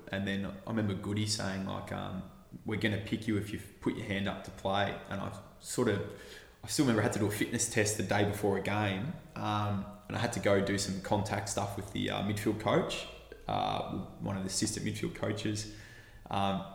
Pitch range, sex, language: 95-105 Hz, male, English